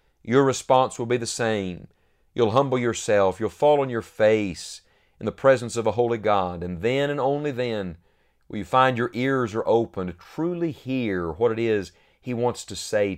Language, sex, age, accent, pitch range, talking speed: English, male, 40-59, American, 105-130 Hz, 195 wpm